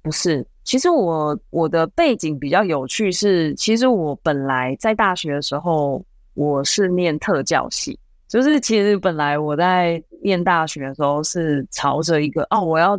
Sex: female